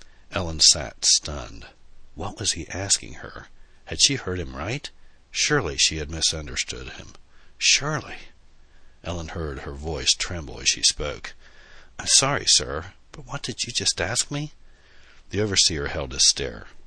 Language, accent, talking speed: English, American, 150 wpm